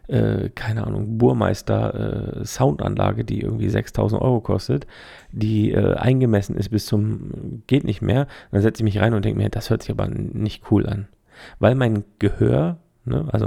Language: German